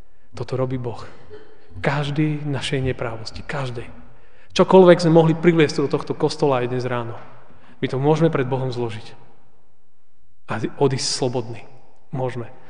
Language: Slovak